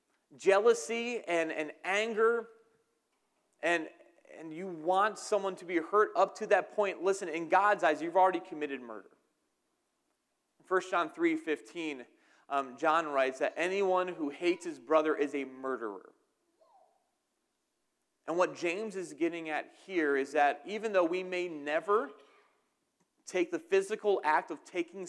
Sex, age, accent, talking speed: male, 30-49, American, 140 wpm